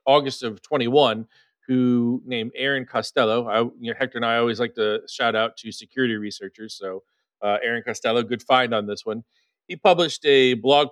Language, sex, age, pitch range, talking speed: English, male, 40-59, 115-150 Hz, 170 wpm